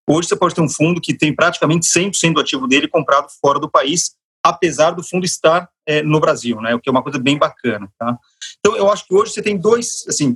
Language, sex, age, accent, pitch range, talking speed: Portuguese, male, 40-59, Brazilian, 135-185 Hz, 245 wpm